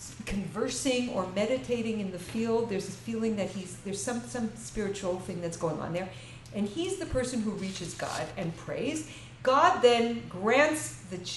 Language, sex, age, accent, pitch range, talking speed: English, female, 50-69, American, 190-260 Hz, 175 wpm